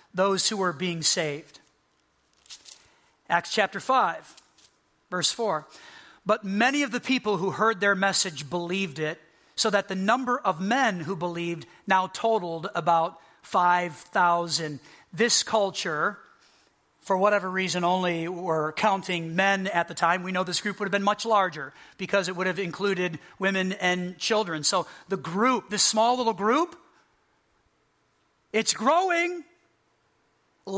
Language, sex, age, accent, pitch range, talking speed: English, male, 40-59, American, 175-220 Hz, 140 wpm